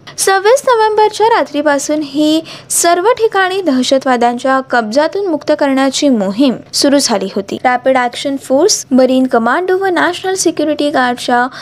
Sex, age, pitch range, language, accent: female, 20-39, 260-365 Hz, Marathi, native